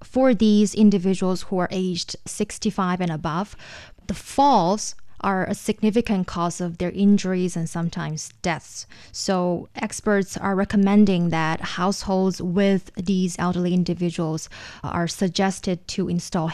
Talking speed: 125 wpm